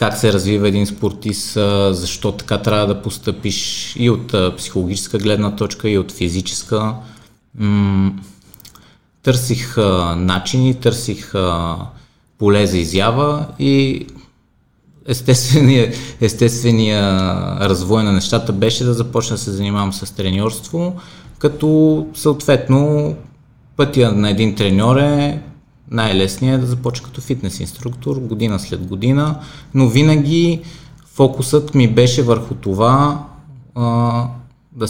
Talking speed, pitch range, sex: 110 wpm, 105-135 Hz, male